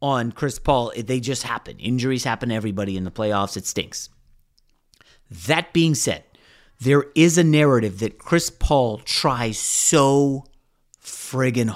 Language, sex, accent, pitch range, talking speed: English, male, American, 130-190 Hz, 145 wpm